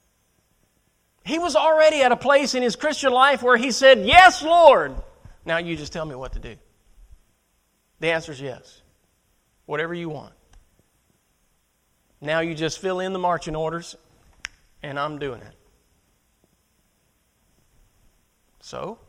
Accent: American